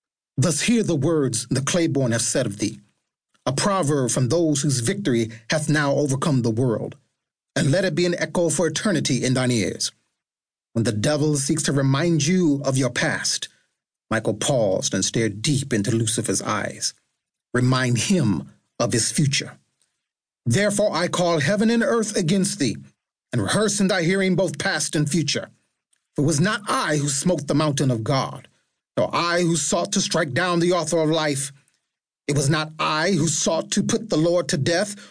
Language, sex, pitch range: English, male, 135-185 Hz